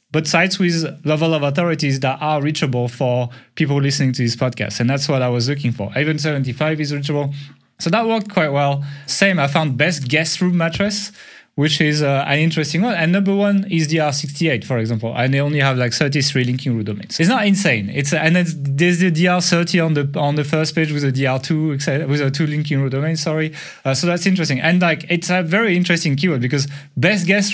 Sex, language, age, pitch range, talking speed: male, English, 30-49, 135-170 Hz, 220 wpm